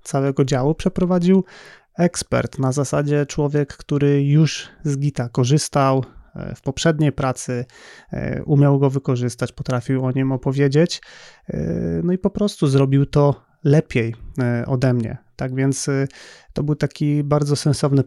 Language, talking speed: Polish, 125 wpm